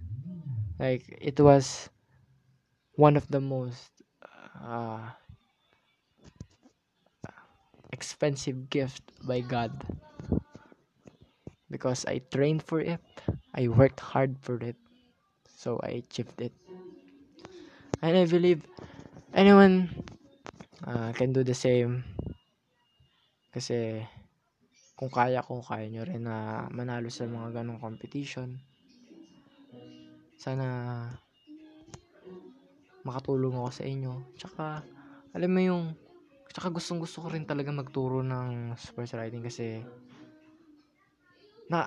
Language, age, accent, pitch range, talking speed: Filipino, 20-39, native, 120-150 Hz, 100 wpm